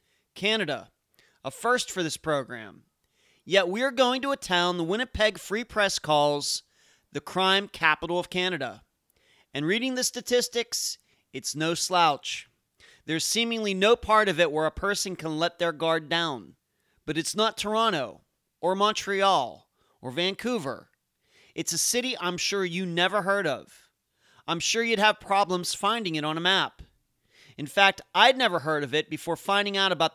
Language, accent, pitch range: English, American, 155-210 Hz